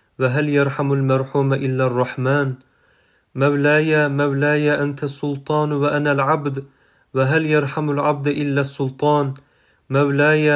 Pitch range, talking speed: 140-150 Hz, 95 wpm